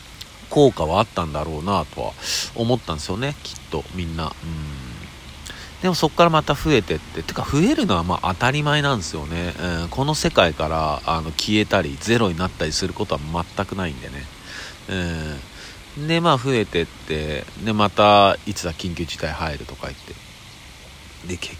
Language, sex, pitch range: Japanese, male, 80-110 Hz